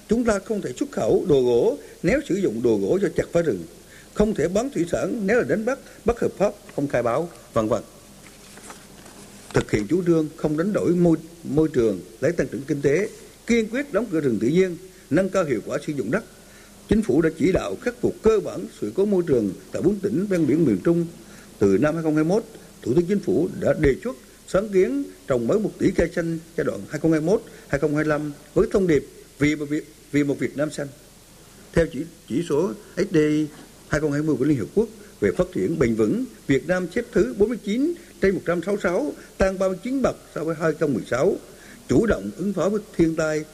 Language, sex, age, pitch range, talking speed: Vietnamese, male, 60-79, 155-205 Hz, 205 wpm